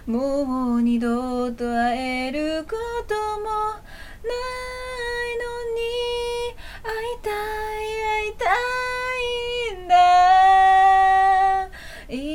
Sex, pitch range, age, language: female, 325-460 Hz, 30-49, Japanese